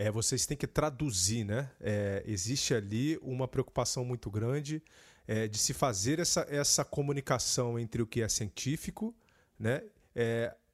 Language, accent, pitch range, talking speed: Portuguese, Brazilian, 115-145 Hz, 150 wpm